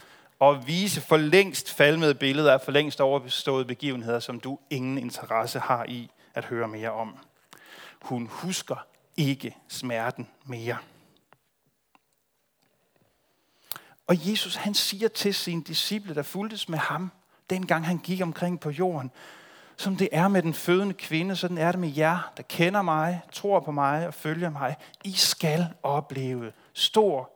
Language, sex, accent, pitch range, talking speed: Danish, male, native, 130-175 Hz, 150 wpm